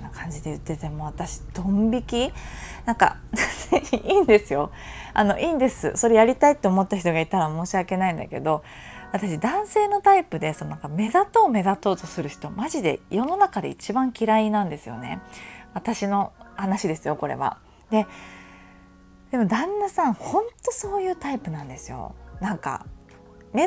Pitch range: 160-255 Hz